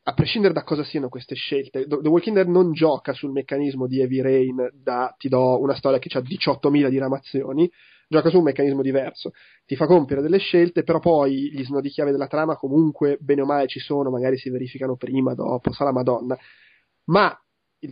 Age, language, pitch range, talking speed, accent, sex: 30-49, Italian, 135-165 Hz, 200 wpm, native, male